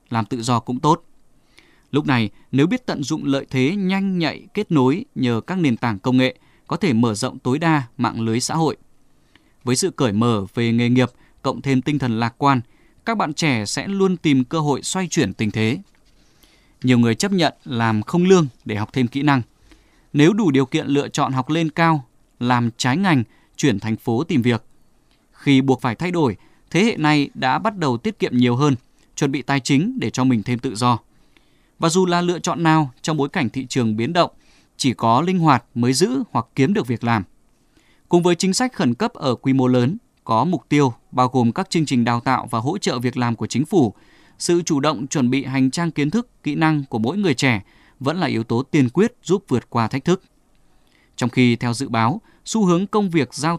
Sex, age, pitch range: male, 20-39, 120-160 Hz